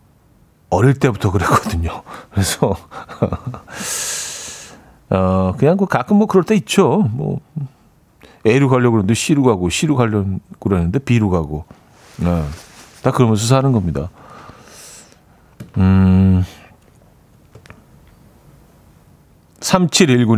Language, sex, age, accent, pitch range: Korean, male, 40-59, native, 105-155 Hz